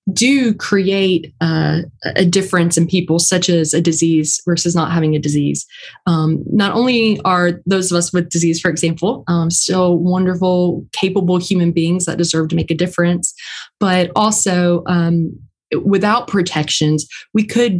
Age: 20-39